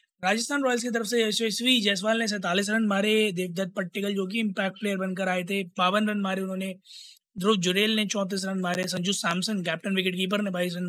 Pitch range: 190-220 Hz